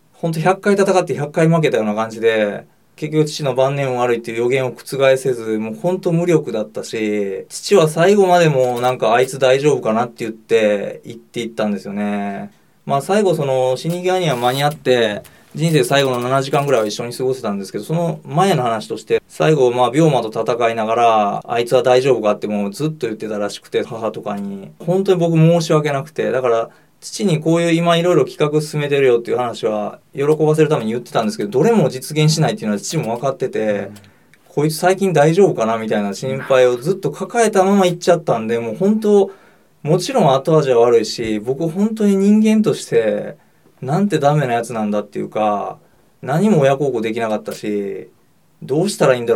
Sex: male